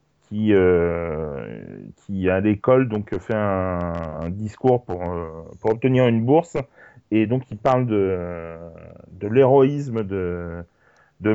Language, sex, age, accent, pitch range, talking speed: French, male, 30-49, French, 95-125 Hz, 130 wpm